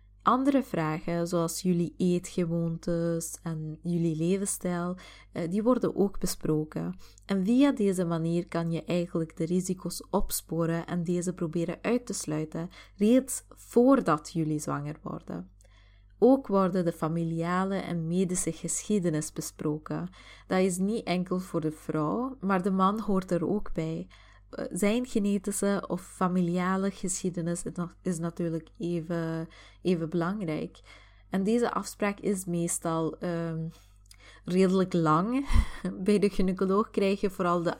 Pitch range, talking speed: 165-195 Hz, 125 wpm